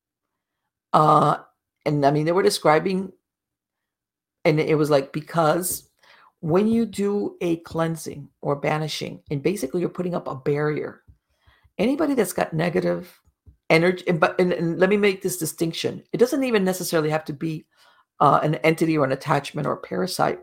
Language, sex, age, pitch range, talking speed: English, female, 50-69, 155-190 Hz, 165 wpm